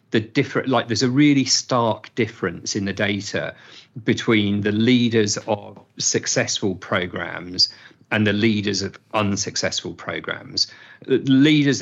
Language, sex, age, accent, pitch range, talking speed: English, male, 40-59, British, 100-120 Hz, 120 wpm